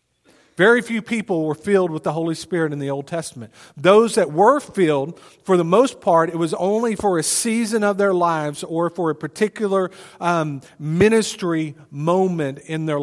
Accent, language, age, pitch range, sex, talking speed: American, English, 40-59, 140-175 Hz, male, 180 wpm